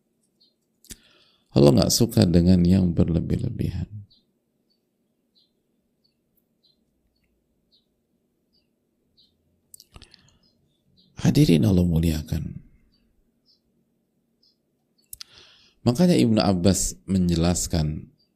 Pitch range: 85-105 Hz